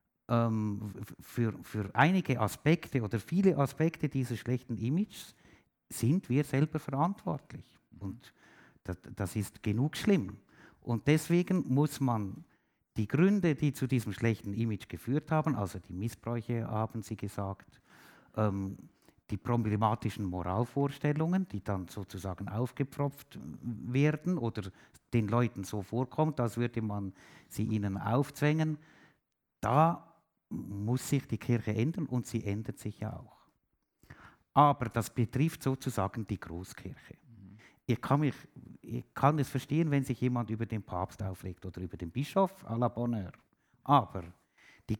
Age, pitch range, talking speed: 60-79, 105-140 Hz, 135 wpm